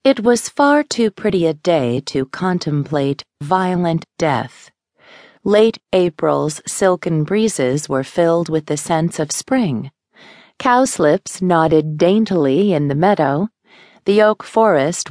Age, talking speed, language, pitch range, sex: 40-59, 125 wpm, English, 150-205 Hz, female